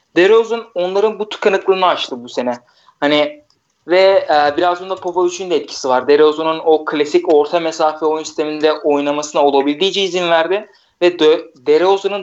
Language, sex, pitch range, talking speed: Turkish, male, 150-195 Hz, 145 wpm